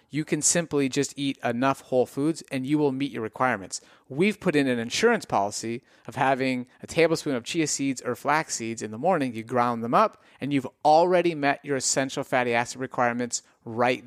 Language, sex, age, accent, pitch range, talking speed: English, male, 30-49, American, 125-165 Hz, 200 wpm